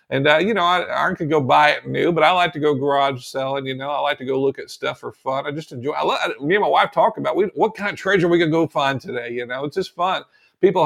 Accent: American